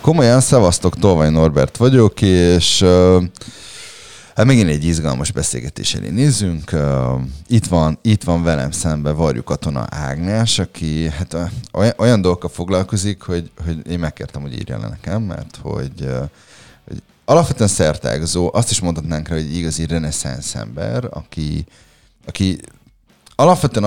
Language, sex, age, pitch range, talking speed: Hungarian, male, 30-49, 80-95 Hz, 130 wpm